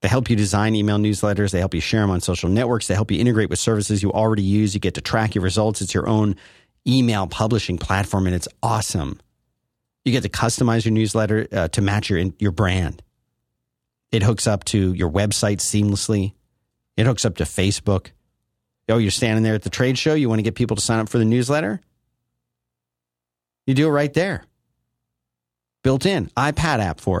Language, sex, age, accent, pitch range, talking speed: English, male, 40-59, American, 90-115 Hz, 200 wpm